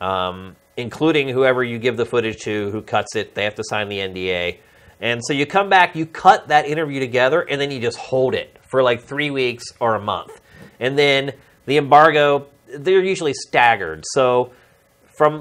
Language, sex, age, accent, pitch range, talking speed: English, male, 30-49, American, 110-145 Hz, 190 wpm